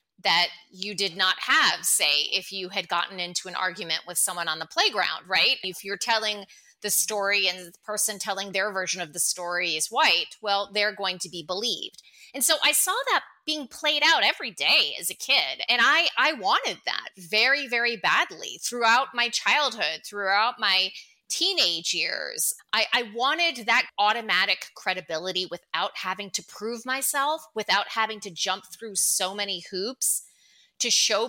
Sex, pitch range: female, 185-235 Hz